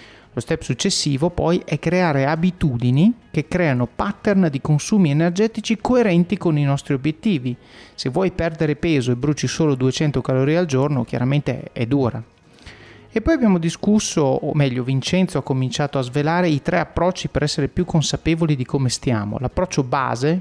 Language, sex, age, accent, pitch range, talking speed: Italian, male, 30-49, native, 130-170 Hz, 160 wpm